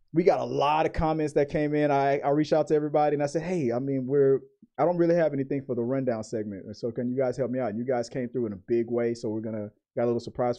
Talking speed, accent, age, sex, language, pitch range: 305 wpm, American, 30-49, male, English, 115-150 Hz